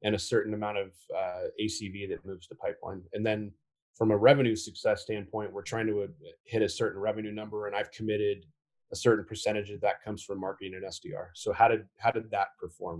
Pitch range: 100-115 Hz